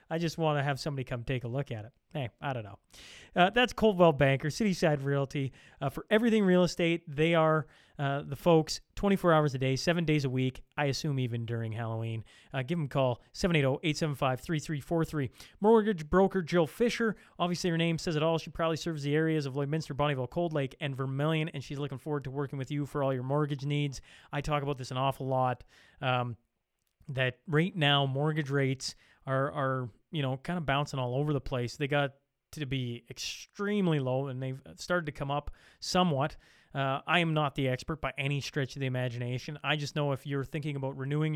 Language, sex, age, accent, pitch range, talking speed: English, male, 30-49, American, 135-160 Hz, 210 wpm